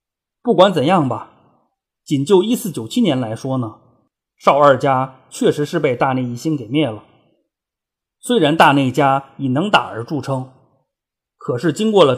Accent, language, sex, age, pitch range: native, Chinese, male, 30-49, 125-160 Hz